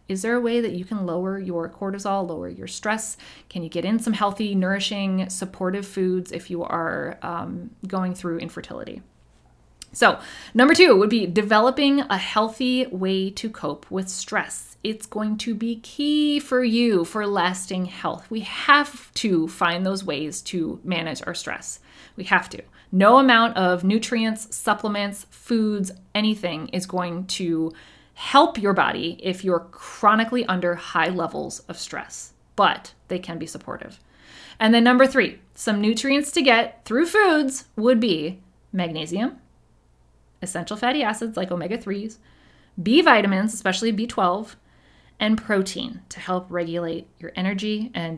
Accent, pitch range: American, 175-230 Hz